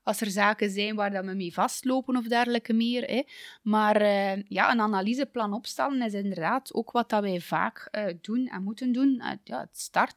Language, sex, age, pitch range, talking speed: Dutch, female, 20-39, 190-235 Hz, 160 wpm